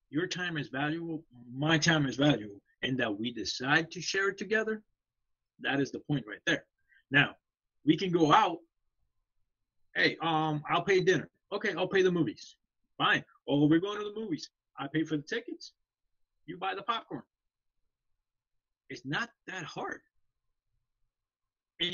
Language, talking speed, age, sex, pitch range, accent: English, 160 wpm, 20-39, male, 135-190 Hz, American